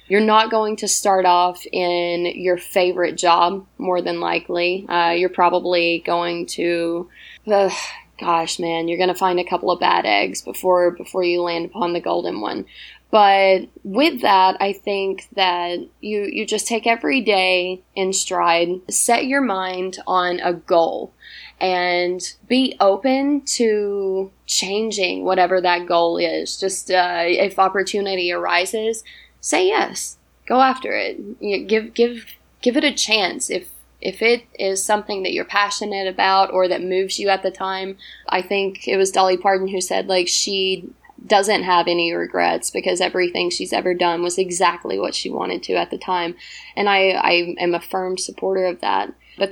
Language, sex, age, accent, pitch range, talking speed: English, female, 20-39, American, 175-200 Hz, 165 wpm